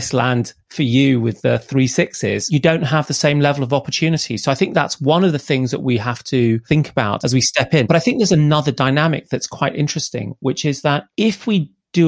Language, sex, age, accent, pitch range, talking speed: English, male, 30-49, British, 125-150 Hz, 240 wpm